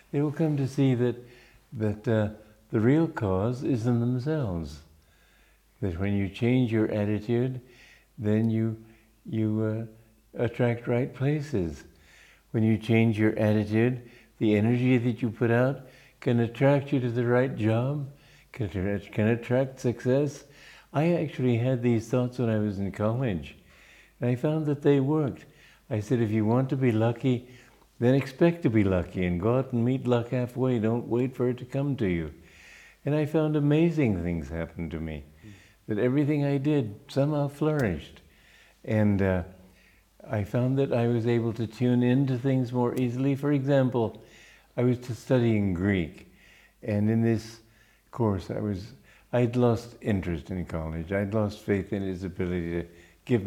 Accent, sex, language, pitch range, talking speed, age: American, male, English, 100-130 Hz, 165 wpm, 60-79